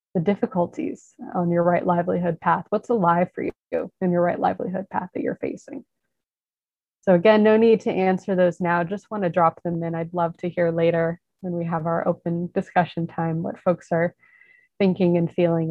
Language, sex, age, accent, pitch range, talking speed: English, female, 20-39, American, 170-195 Hz, 195 wpm